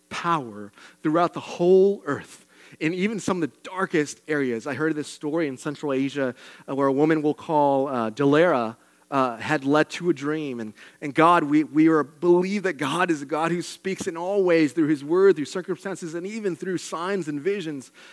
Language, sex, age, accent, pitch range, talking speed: English, male, 30-49, American, 135-175 Hz, 190 wpm